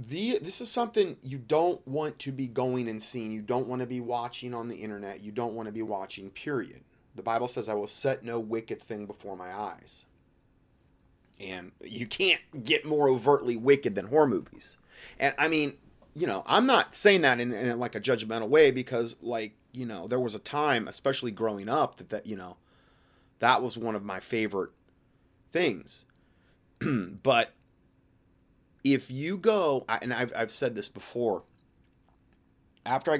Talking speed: 180 wpm